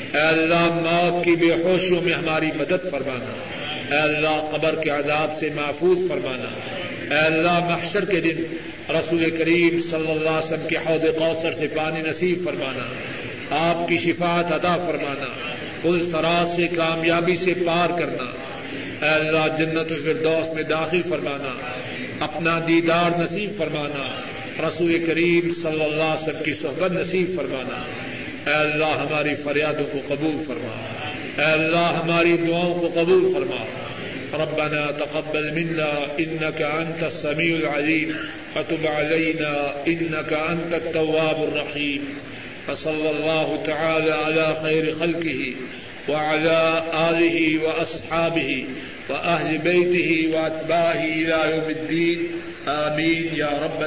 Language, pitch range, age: Urdu, 150-165 Hz, 50-69